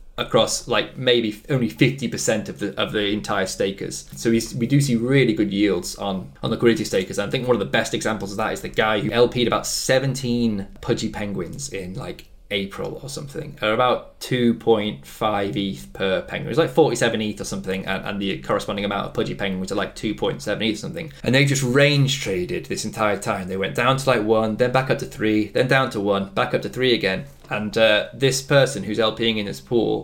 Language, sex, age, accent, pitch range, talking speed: English, male, 20-39, British, 105-130 Hz, 220 wpm